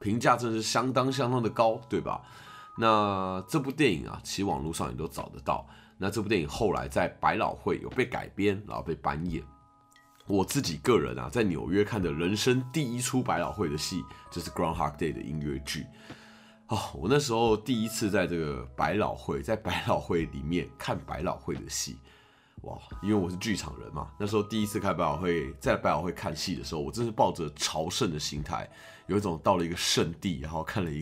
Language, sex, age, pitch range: Chinese, male, 20-39, 85-125 Hz